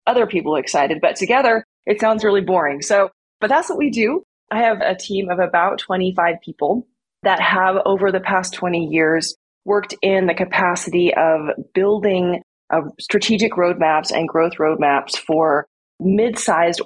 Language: English